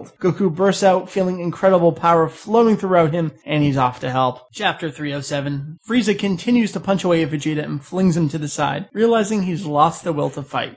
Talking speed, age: 200 wpm, 30-49